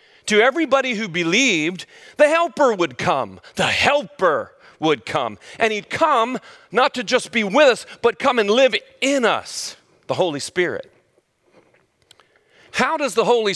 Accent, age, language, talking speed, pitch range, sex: American, 40-59, English, 150 wpm, 185-285 Hz, male